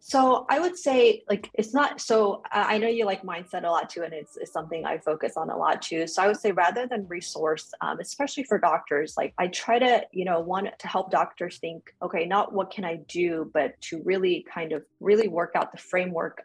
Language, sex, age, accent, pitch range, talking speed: English, female, 30-49, American, 160-205 Hz, 235 wpm